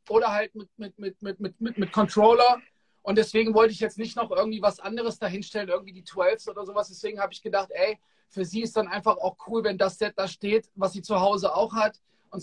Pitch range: 200-235 Hz